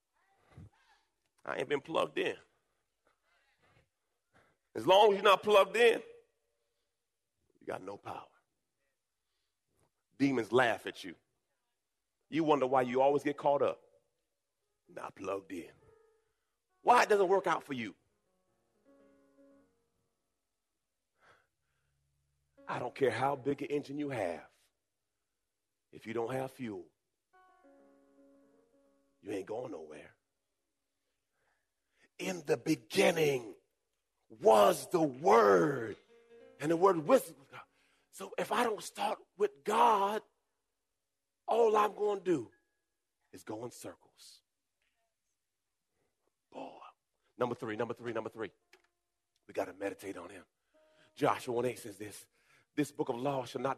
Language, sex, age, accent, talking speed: English, male, 40-59, American, 120 wpm